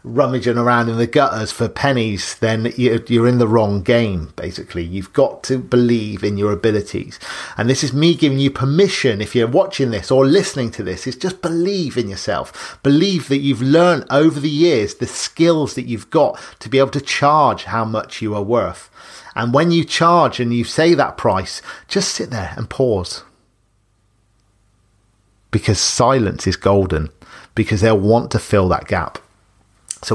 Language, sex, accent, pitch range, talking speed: English, male, British, 110-145 Hz, 175 wpm